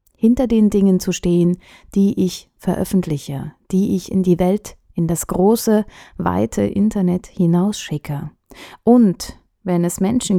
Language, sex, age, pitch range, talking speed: German, female, 30-49, 170-220 Hz, 135 wpm